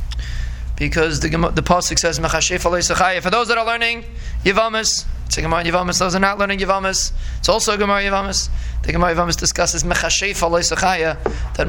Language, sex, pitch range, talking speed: English, male, 150-185 Hz, 170 wpm